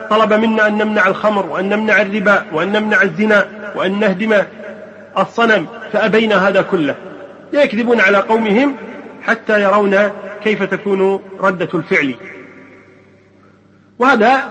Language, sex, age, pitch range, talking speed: Arabic, male, 40-59, 175-210 Hz, 110 wpm